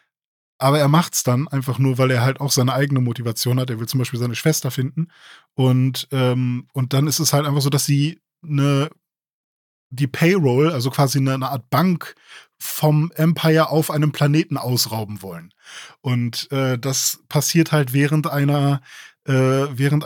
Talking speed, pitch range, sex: 170 wpm, 130-155 Hz, male